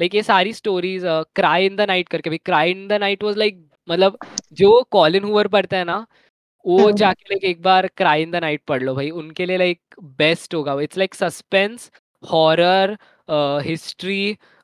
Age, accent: 20-39, native